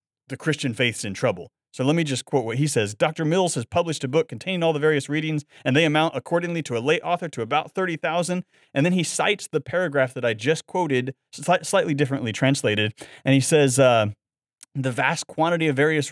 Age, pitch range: 30-49, 125-165 Hz